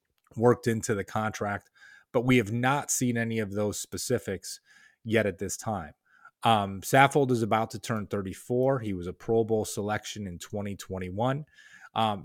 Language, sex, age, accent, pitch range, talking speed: English, male, 30-49, American, 105-125 Hz, 160 wpm